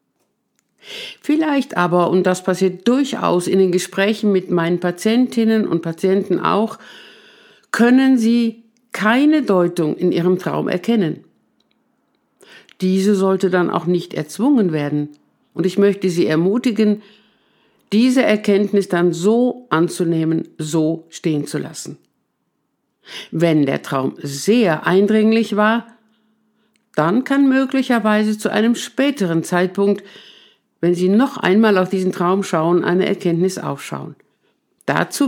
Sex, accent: female, German